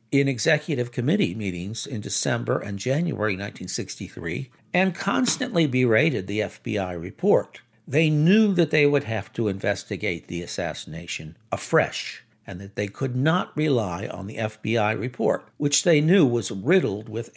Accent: American